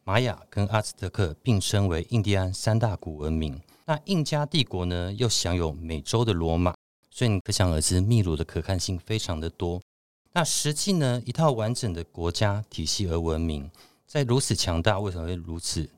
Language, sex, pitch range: Chinese, male, 85-115 Hz